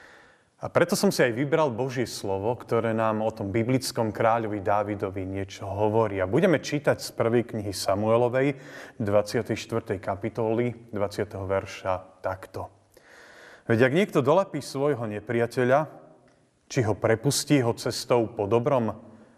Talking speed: 130 wpm